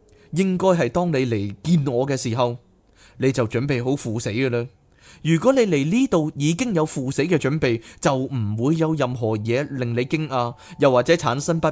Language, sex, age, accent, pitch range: Chinese, male, 20-39, native, 115-160 Hz